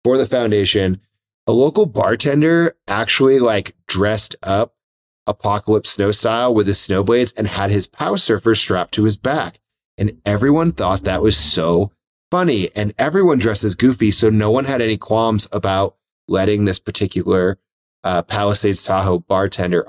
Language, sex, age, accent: English, male, 30-49, American